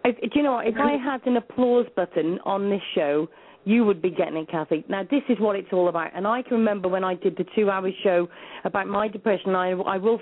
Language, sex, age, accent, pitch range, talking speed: English, female, 40-59, British, 190-240 Hz, 255 wpm